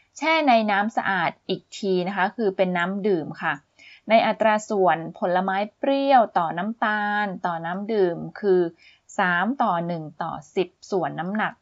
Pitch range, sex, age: 180-230 Hz, female, 20-39